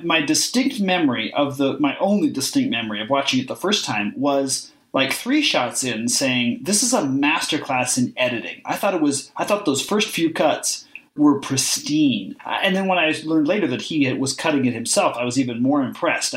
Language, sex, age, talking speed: English, male, 30-49, 215 wpm